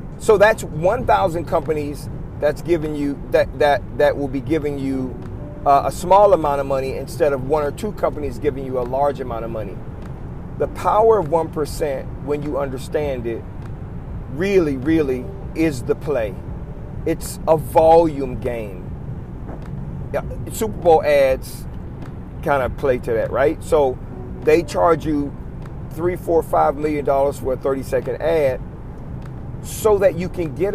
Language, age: English, 40-59